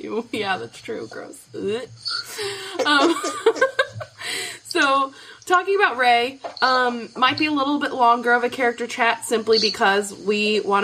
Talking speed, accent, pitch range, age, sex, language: 140 wpm, American, 195-255 Hz, 20-39, female, English